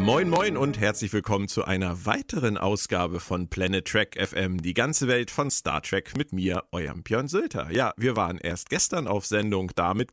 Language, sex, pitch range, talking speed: German, male, 100-140 Hz, 195 wpm